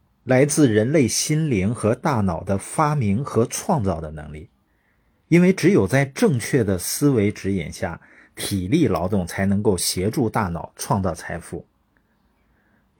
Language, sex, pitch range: Chinese, male, 95-145 Hz